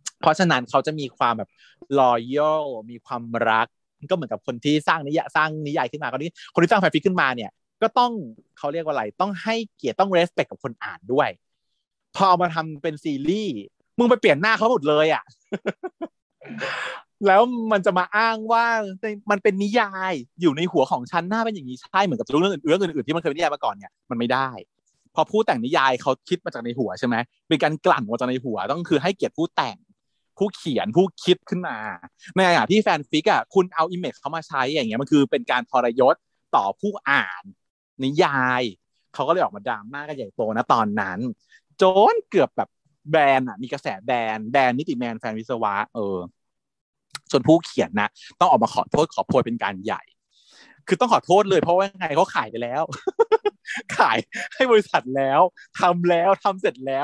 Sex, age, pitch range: male, 30-49, 135-205 Hz